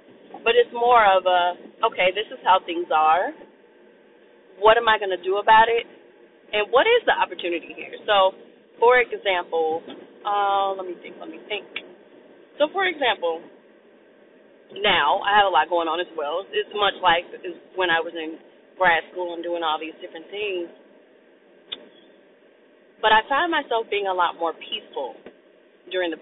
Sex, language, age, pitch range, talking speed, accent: female, English, 30-49, 175-295 Hz, 165 wpm, American